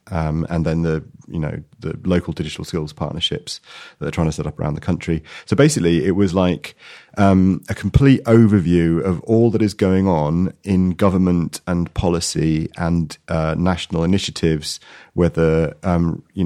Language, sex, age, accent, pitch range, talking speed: English, male, 30-49, British, 80-90 Hz, 170 wpm